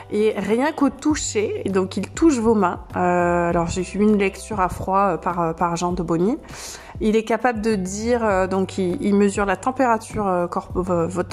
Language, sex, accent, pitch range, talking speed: French, female, French, 180-225 Hz, 175 wpm